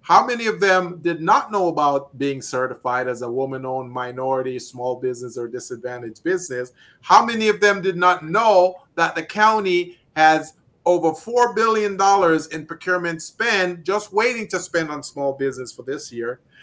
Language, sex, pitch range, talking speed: English, male, 145-195 Hz, 165 wpm